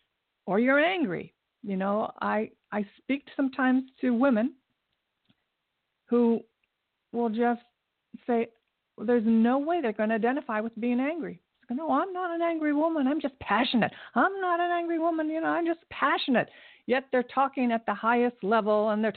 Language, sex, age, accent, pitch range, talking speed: English, female, 50-69, American, 200-255 Hz, 170 wpm